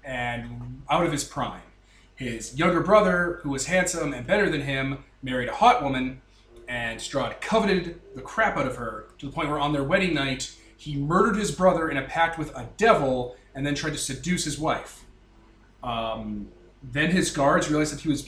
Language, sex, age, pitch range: English, male, 30-49, 125-165 Hz